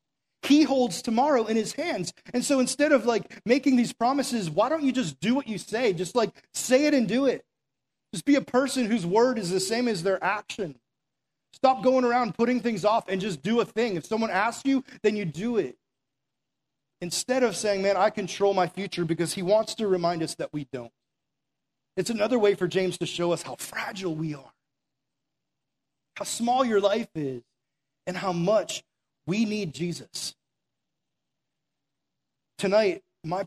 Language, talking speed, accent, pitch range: English, 185 wpm, American, 145-225 Hz